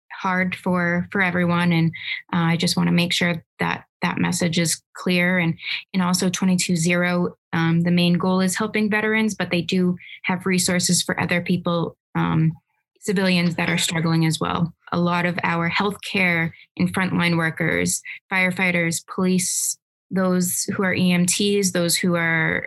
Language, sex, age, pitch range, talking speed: English, female, 20-39, 170-190 Hz, 160 wpm